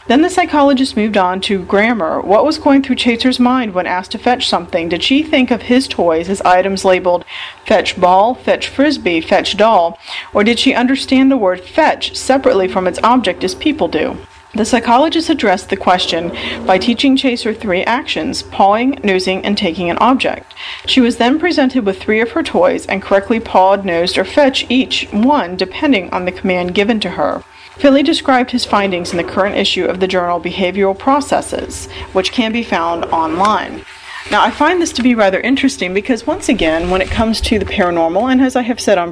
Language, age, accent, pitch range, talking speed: English, 40-59, American, 185-255 Hz, 195 wpm